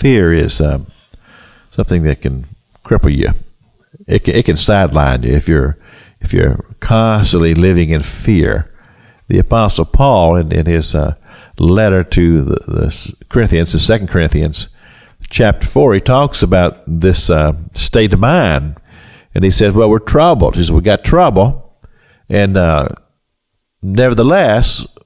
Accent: American